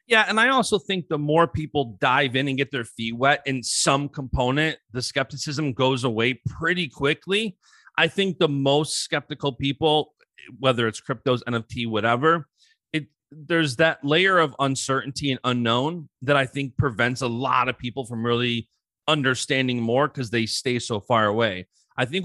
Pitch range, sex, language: 125-155 Hz, male, English